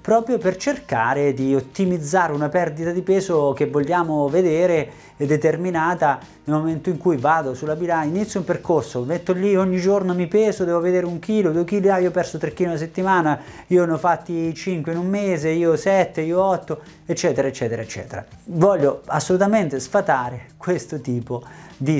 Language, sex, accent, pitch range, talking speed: Italian, male, native, 135-180 Hz, 175 wpm